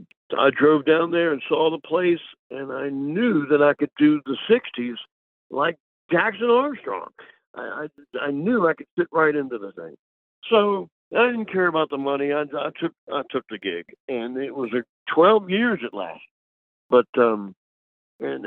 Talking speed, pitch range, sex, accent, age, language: 170 wpm, 140-205 Hz, male, American, 60-79, English